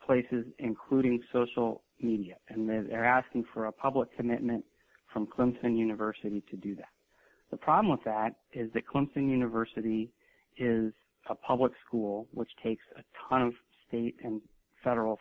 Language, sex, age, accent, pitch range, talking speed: English, male, 40-59, American, 110-125 Hz, 145 wpm